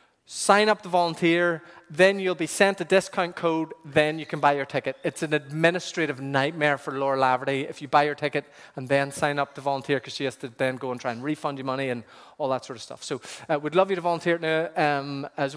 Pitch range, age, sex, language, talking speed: 135-165 Hz, 30-49, male, English, 240 wpm